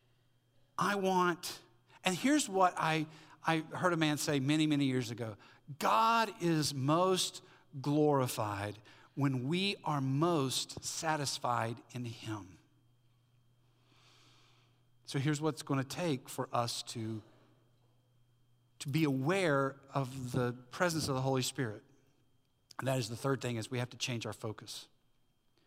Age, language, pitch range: 50-69, English, 125-185 Hz